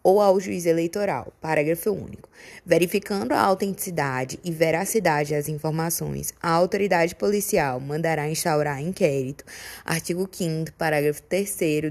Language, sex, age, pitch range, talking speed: Portuguese, female, 20-39, 150-185 Hz, 115 wpm